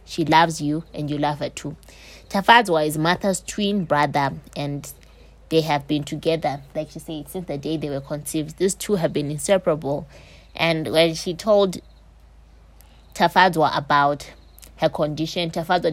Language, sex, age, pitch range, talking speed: English, female, 20-39, 150-180 Hz, 155 wpm